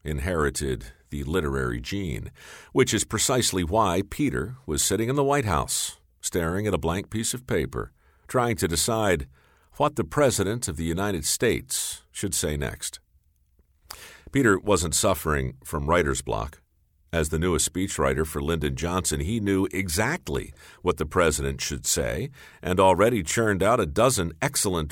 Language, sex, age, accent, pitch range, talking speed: English, male, 50-69, American, 75-105 Hz, 150 wpm